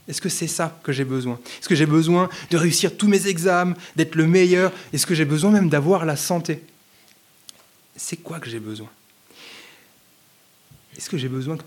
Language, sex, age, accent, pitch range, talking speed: French, male, 20-39, French, 140-190 Hz, 190 wpm